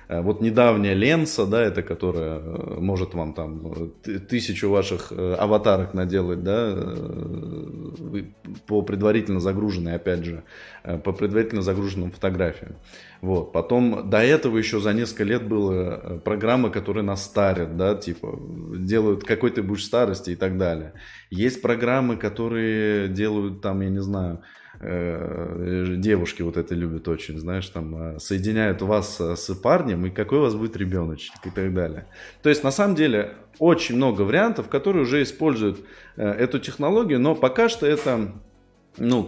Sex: male